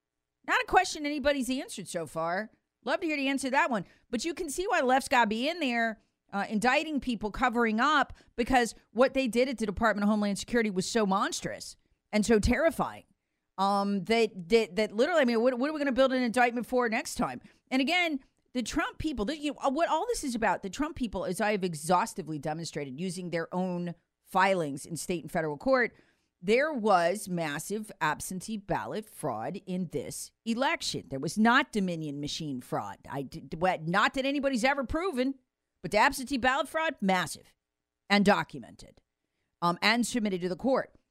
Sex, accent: female, American